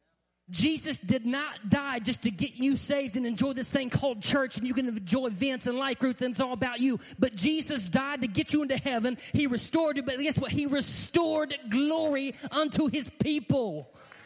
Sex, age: male, 30-49